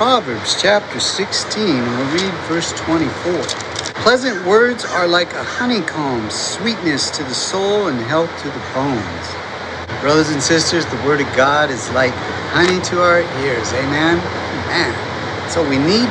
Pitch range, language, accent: 130-190 Hz, English, American